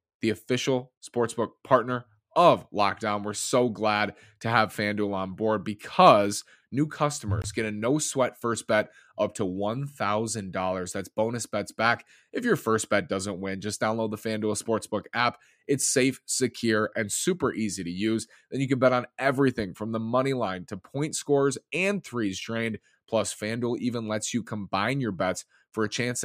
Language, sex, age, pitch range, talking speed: English, male, 20-39, 105-125 Hz, 175 wpm